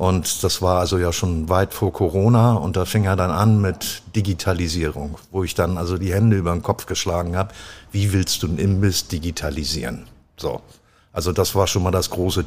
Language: German